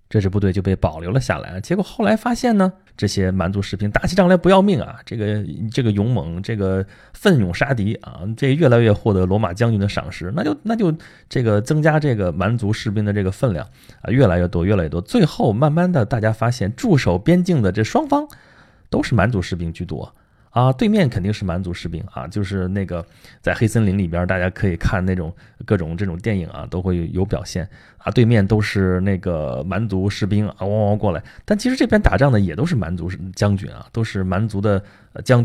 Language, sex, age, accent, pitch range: Chinese, male, 30-49, native, 95-125 Hz